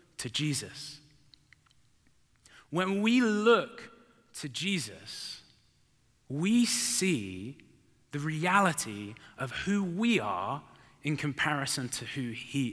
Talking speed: 95 wpm